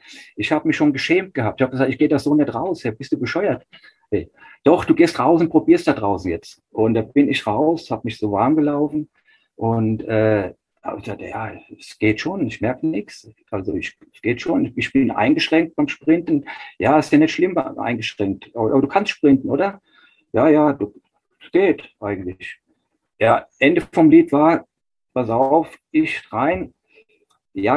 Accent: German